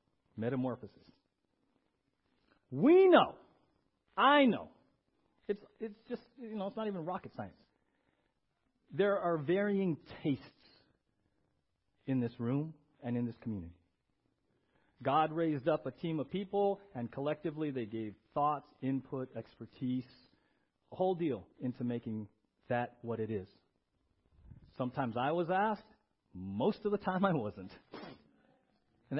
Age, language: 40-59, English